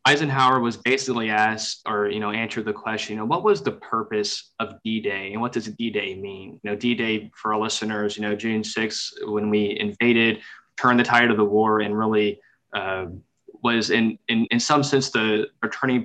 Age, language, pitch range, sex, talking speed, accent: 20-39, English, 110-125 Hz, male, 200 wpm, American